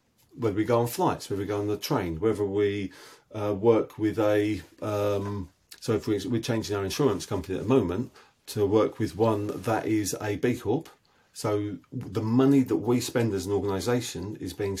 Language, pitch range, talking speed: English, 100-115 Hz, 200 wpm